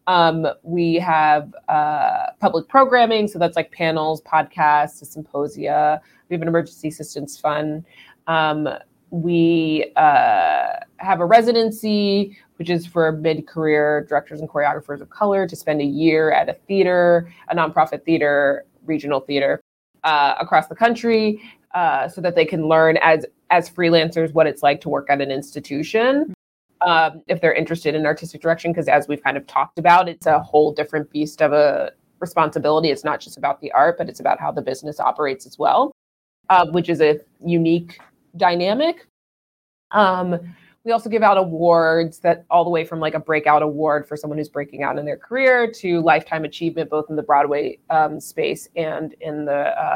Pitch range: 150-180 Hz